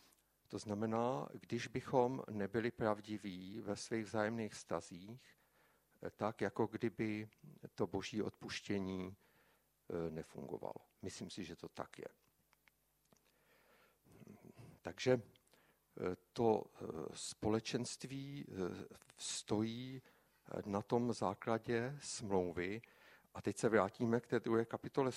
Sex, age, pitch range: male, 60-79, 95-115 Hz